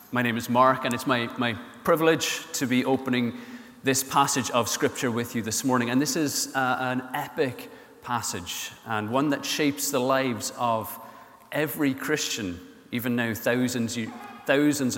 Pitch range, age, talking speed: 120-145 Hz, 30-49, 160 wpm